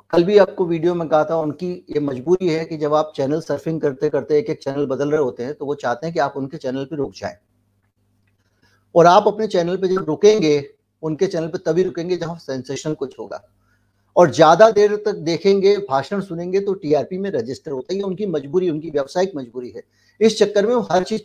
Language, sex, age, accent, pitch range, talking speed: Hindi, male, 60-79, native, 140-185 Hz, 215 wpm